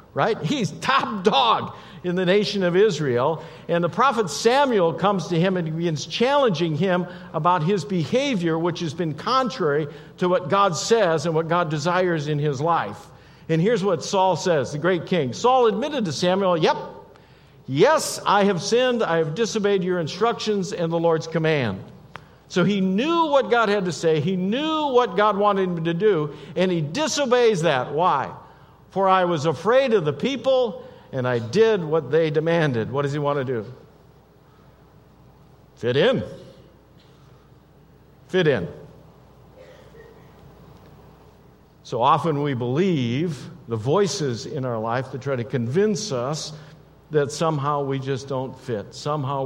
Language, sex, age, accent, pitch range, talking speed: English, male, 50-69, American, 145-195 Hz, 160 wpm